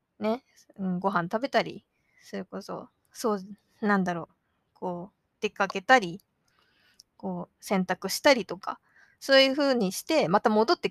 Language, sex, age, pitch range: Japanese, female, 20-39, 195-285 Hz